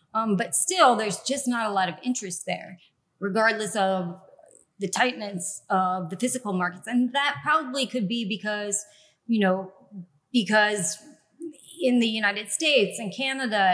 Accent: American